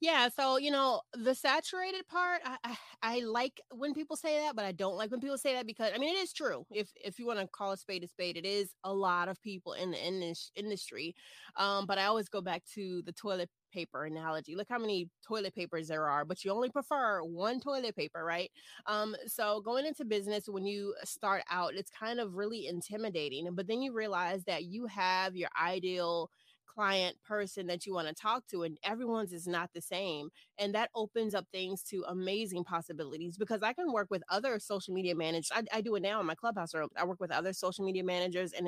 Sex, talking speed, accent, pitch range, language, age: female, 230 wpm, American, 180-230 Hz, English, 20-39